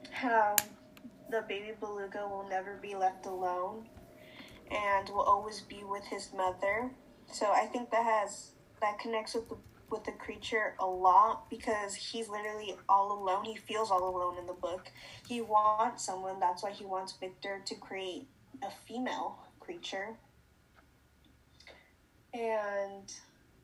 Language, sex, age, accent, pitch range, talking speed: English, female, 10-29, American, 190-220 Hz, 140 wpm